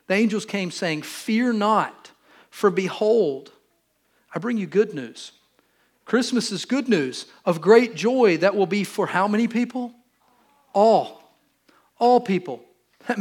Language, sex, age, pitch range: English, male, 40-59, 155-210 Hz